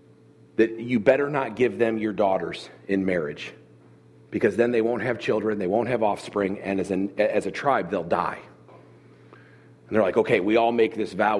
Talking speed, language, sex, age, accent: 190 wpm, English, male, 40-59, American